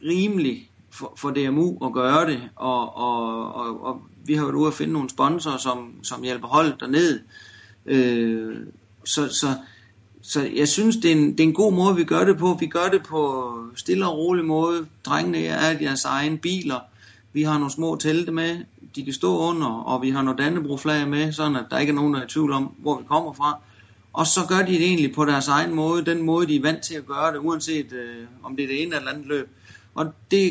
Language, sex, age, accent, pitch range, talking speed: Danish, male, 30-49, native, 115-155 Hz, 230 wpm